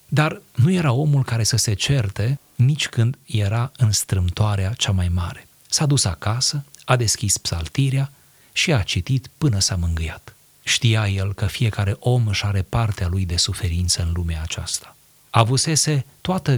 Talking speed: 160 wpm